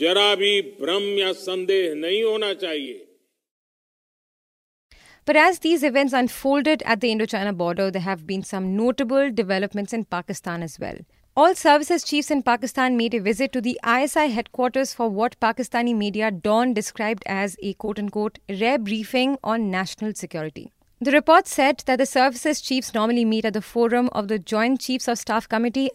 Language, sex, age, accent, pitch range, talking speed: English, female, 30-49, Indian, 205-265 Hz, 150 wpm